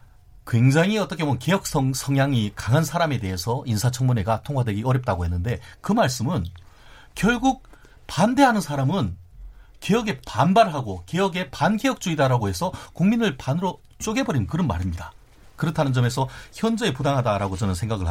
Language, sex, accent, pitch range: Korean, male, native, 105-150 Hz